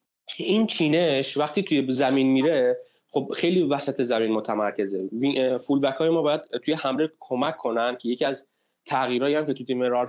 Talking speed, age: 155 wpm, 20-39